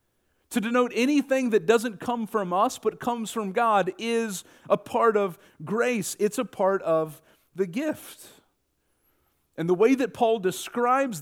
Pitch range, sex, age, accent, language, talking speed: 180-230 Hz, male, 40-59, American, English, 155 wpm